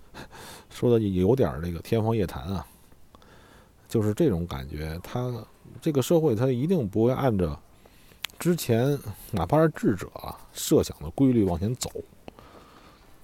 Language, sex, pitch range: Chinese, male, 85-125 Hz